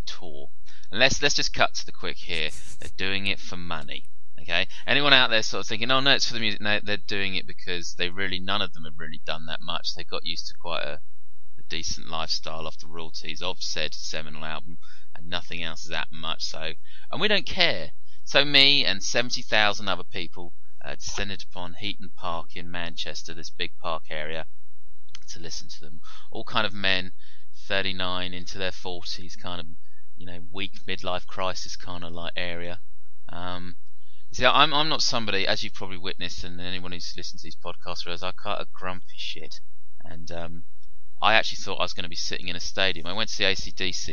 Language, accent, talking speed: English, British, 210 wpm